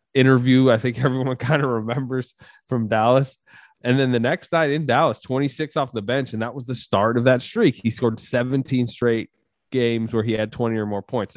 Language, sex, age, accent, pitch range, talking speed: English, male, 20-39, American, 110-130 Hz, 210 wpm